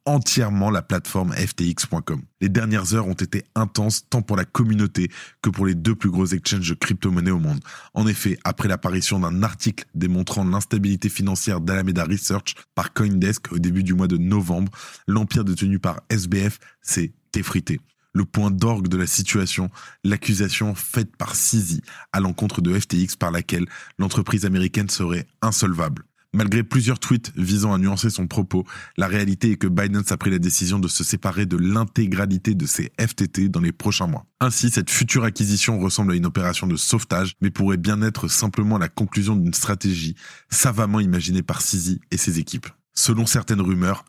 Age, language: 20-39, French